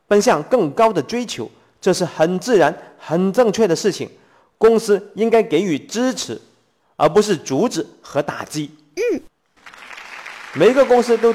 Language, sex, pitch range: Chinese, male, 145-205 Hz